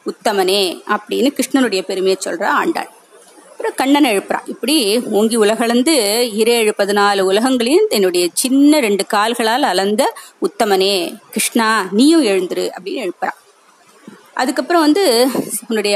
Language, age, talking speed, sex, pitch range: Tamil, 20-39, 115 wpm, female, 205-275 Hz